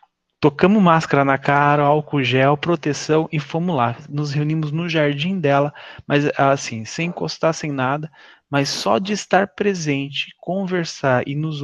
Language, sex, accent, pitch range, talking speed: Portuguese, male, Brazilian, 130-165 Hz, 150 wpm